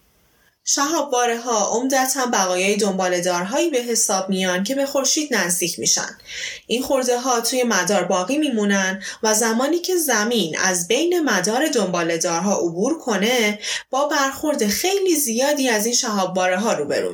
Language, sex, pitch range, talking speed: Persian, female, 195-265 Hz, 135 wpm